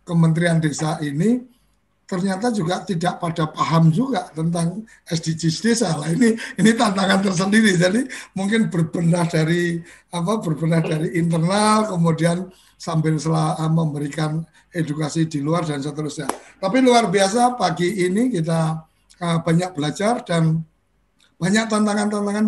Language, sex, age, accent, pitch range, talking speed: Indonesian, male, 60-79, native, 155-180 Hz, 125 wpm